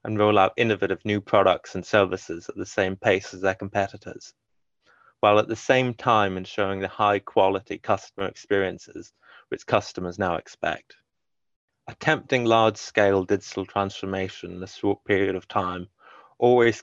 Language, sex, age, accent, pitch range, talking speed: English, male, 20-39, British, 95-105 Hz, 145 wpm